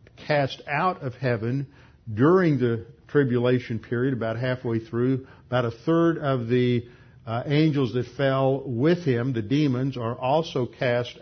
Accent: American